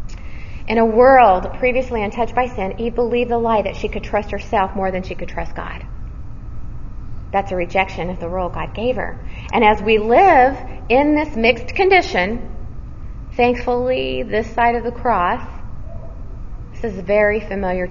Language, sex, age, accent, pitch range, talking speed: English, female, 30-49, American, 165-230 Hz, 165 wpm